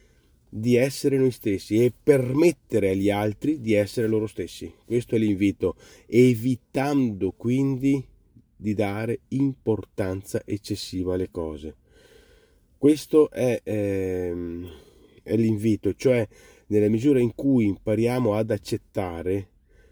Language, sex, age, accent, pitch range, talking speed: Italian, male, 30-49, native, 95-120 Hz, 105 wpm